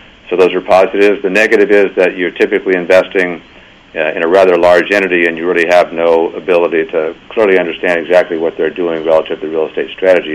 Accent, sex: American, male